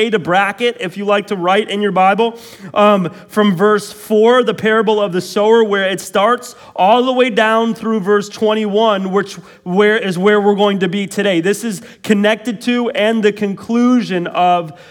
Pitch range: 190-225 Hz